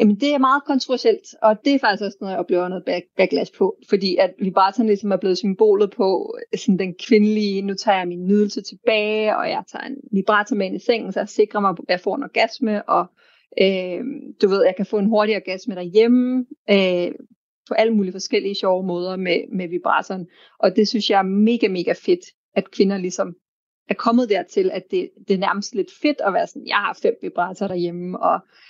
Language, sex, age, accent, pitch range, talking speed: Danish, female, 30-49, native, 190-235 Hz, 215 wpm